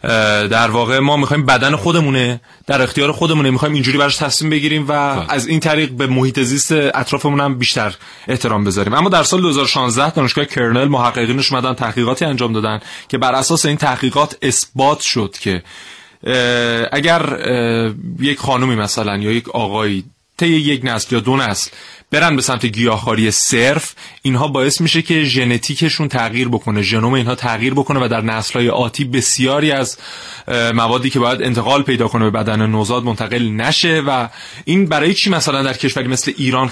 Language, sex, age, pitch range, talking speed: Persian, male, 30-49, 115-145 Hz, 160 wpm